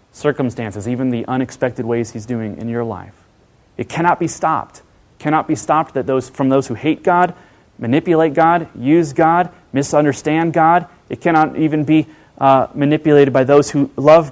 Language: English